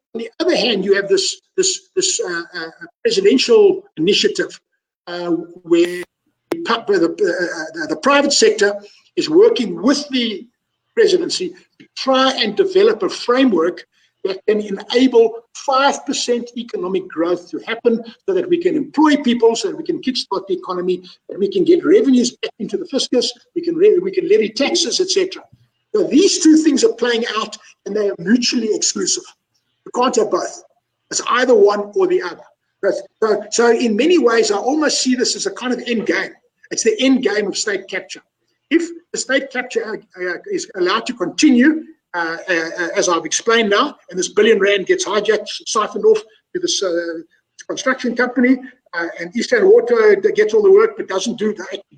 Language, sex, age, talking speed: English, male, 60-79, 175 wpm